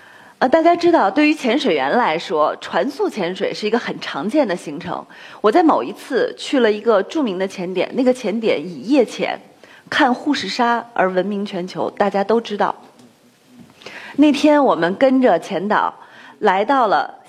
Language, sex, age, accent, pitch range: Chinese, female, 30-49, native, 205-290 Hz